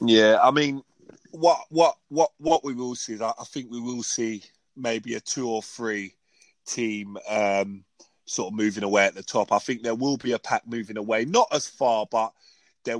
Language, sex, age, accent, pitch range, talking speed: English, male, 20-39, British, 110-135 Hz, 210 wpm